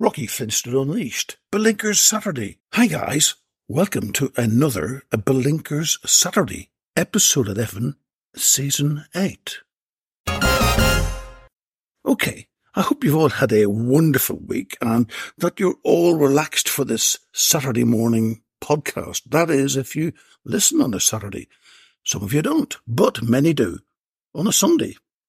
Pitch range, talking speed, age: 125-190 Hz, 125 wpm, 60-79